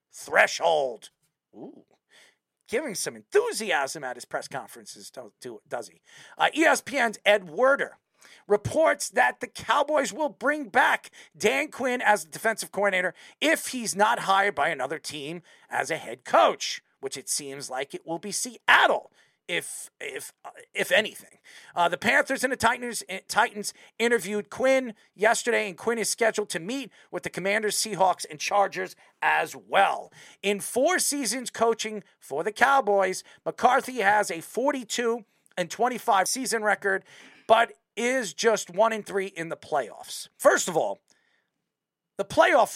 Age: 40-59